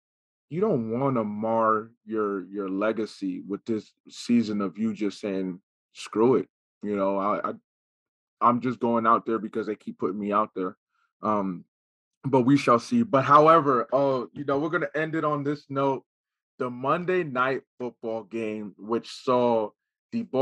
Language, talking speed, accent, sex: English, 175 wpm, American, male